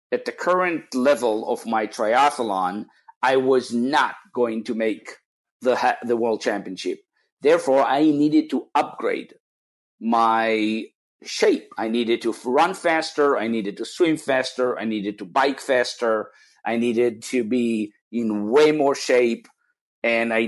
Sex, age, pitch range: male, 50-69, 115-140 Hz